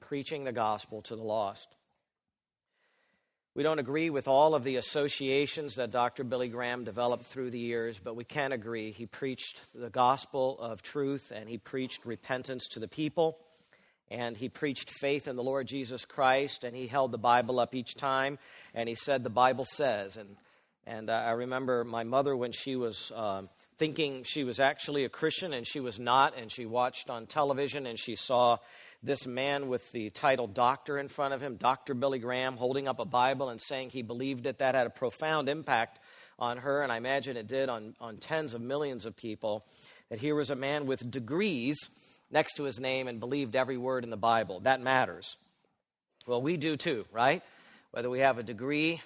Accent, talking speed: American, 195 wpm